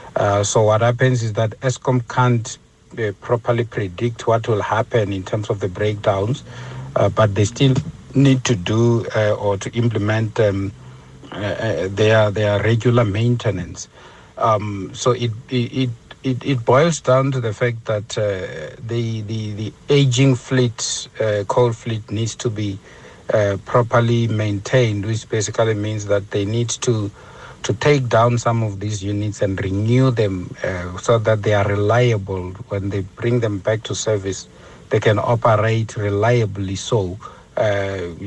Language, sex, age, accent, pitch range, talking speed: English, male, 60-79, South African, 100-120 Hz, 155 wpm